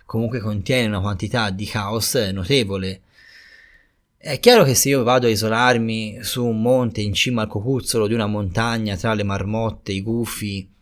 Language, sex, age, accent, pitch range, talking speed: Italian, male, 20-39, native, 95-120 Hz, 165 wpm